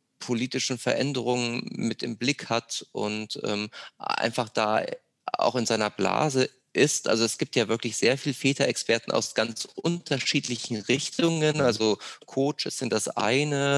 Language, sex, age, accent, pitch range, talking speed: German, male, 30-49, German, 110-130 Hz, 140 wpm